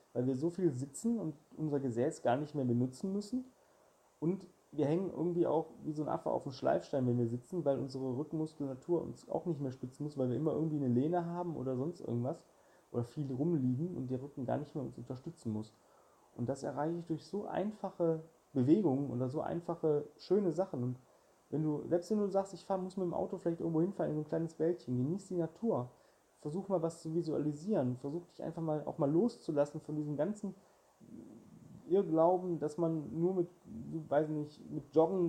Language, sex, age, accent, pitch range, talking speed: German, male, 30-49, German, 140-170 Hz, 205 wpm